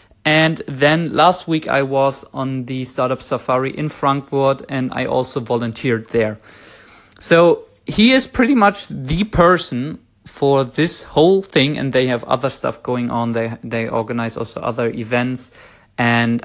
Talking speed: 155 wpm